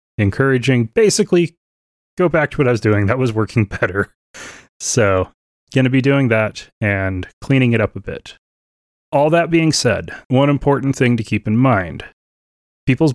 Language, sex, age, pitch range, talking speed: English, male, 30-49, 100-135 Hz, 170 wpm